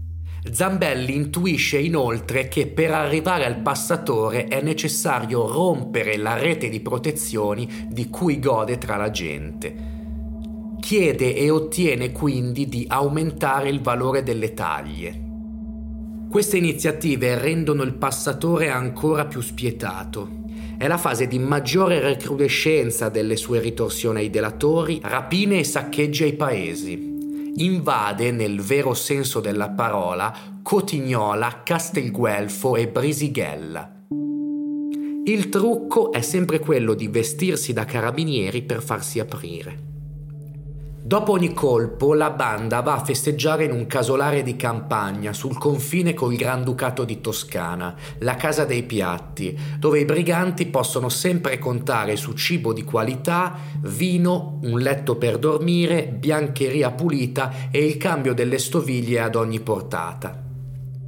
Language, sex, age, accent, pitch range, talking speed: Italian, male, 30-49, native, 115-155 Hz, 125 wpm